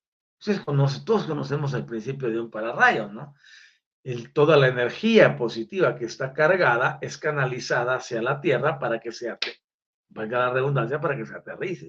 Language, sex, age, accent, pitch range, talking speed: Spanish, male, 40-59, Mexican, 120-155 Hz, 165 wpm